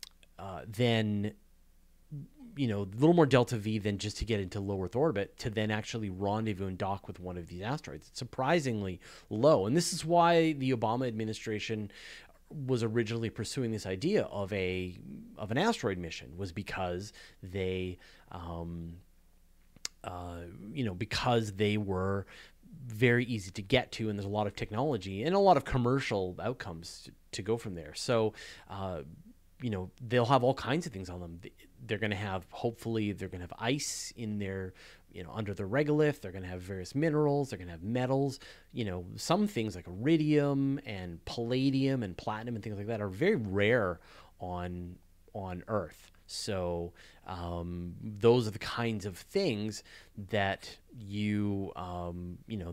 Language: English